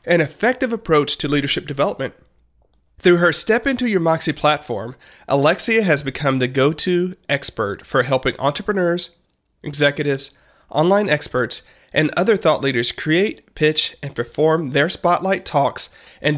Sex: male